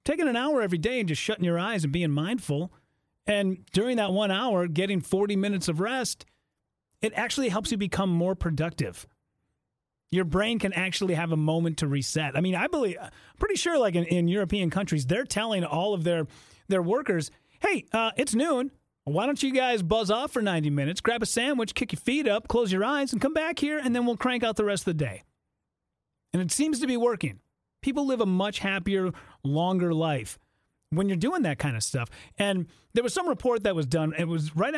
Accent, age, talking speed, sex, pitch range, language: American, 30-49, 215 wpm, male, 155-235 Hz, English